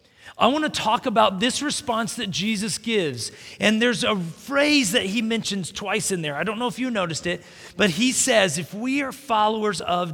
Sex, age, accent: male, 40-59, American